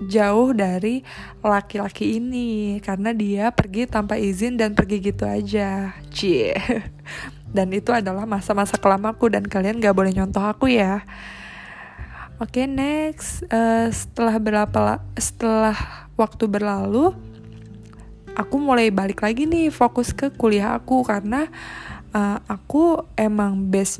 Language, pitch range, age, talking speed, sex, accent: Indonesian, 200-230 Hz, 20-39, 130 wpm, female, native